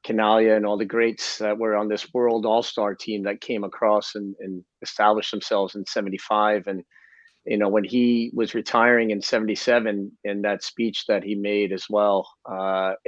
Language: English